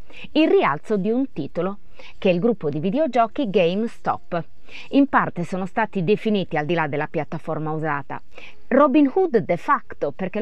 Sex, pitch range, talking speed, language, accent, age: female, 155-255 Hz, 160 wpm, Italian, native, 30-49